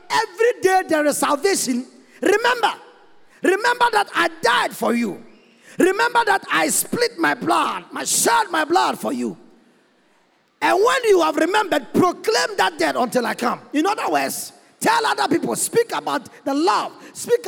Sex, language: male, English